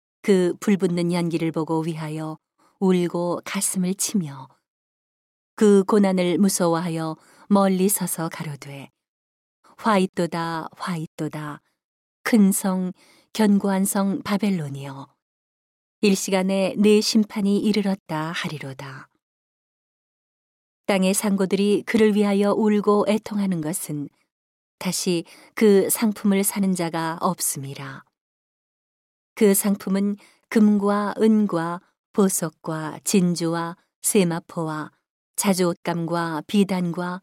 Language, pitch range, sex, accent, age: Korean, 165-200 Hz, female, native, 40-59